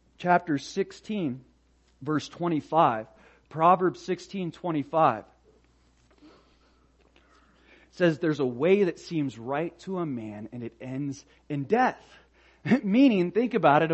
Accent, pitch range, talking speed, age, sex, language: American, 155-215 Hz, 115 wpm, 30-49, male, English